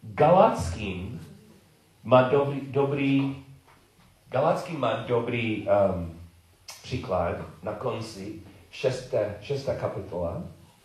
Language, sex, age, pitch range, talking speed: Czech, male, 40-59, 100-140 Hz, 65 wpm